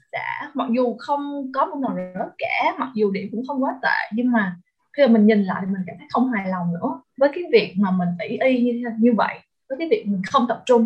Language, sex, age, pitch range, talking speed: Vietnamese, female, 20-39, 205-265 Hz, 260 wpm